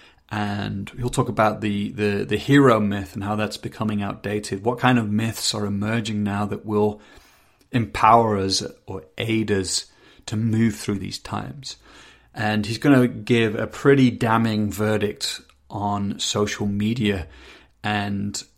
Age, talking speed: 30-49, 150 wpm